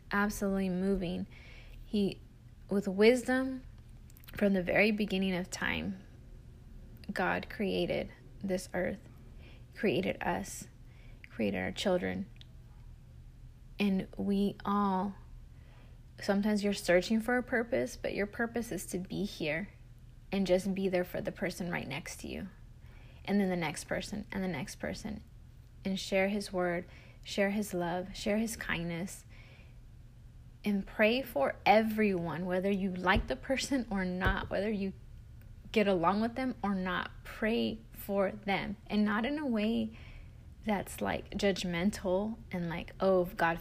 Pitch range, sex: 180-210 Hz, female